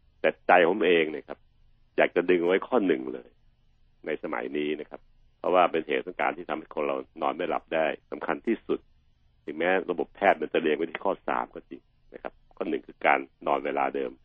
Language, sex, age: Thai, male, 60-79